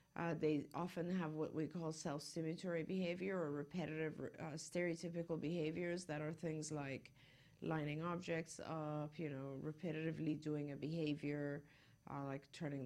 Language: English